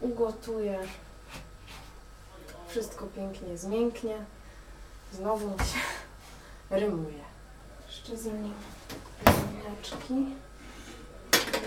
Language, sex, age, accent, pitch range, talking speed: Polish, female, 20-39, native, 170-210 Hz, 55 wpm